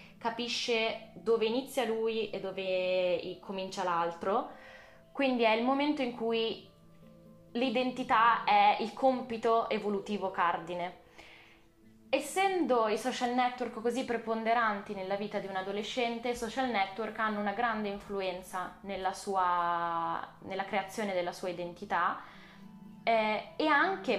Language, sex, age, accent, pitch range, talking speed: Italian, female, 10-29, native, 195-255 Hz, 120 wpm